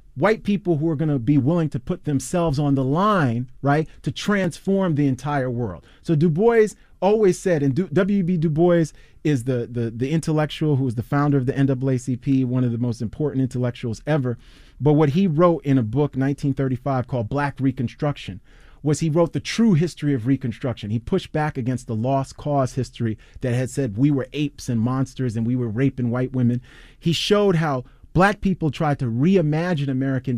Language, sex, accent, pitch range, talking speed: English, male, American, 130-165 Hz, 195 wpm